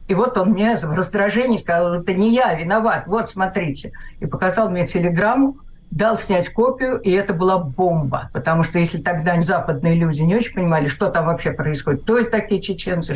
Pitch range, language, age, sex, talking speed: 170-215 Hz, Russian, 50-69, female, 185 wpm